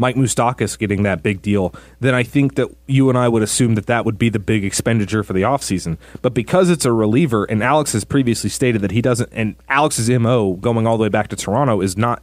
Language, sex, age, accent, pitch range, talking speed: English, male, 30-49, American, 105-135 Hz, 240 wpm